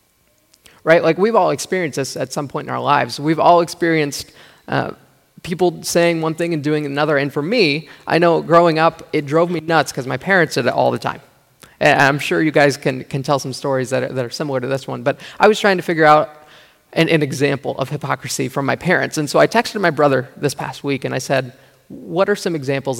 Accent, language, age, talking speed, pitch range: American, English, 20-39, 235 wpm, 140-170 Hz